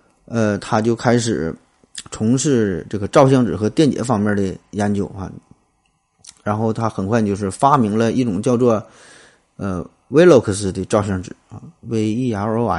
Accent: native